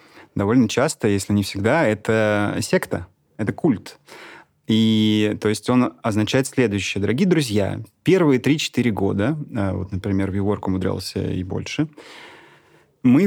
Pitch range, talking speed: 100-125 Hz, 120 wpm